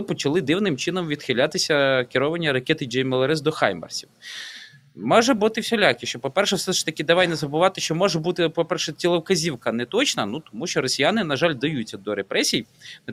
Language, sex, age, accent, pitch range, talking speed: Ukrainian, male, 20-39, native, 140-190 Hz, 165 wpm